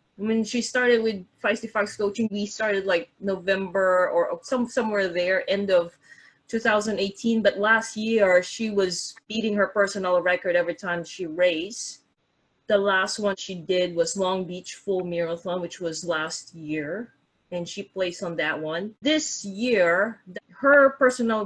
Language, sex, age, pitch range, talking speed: English, female, 30-49, 185-235 Hz, 160 wpm